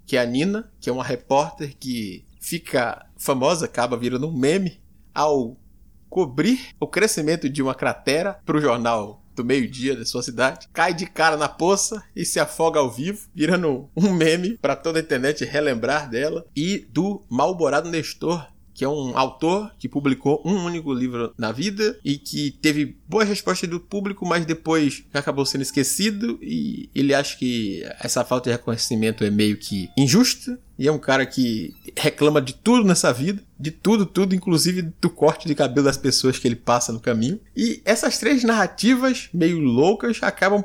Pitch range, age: 130-185 Hz, 20-39